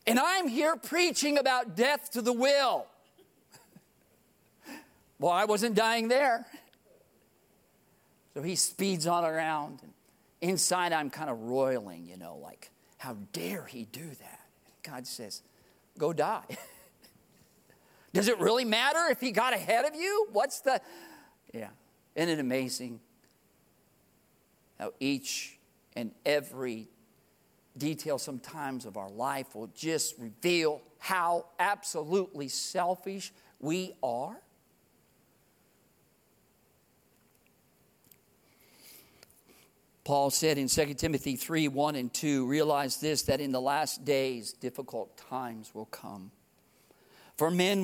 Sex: male